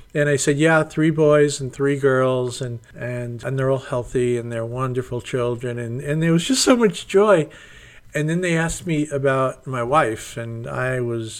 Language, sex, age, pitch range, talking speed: English, male, 50-69, 120-140 Hz, 200 wpm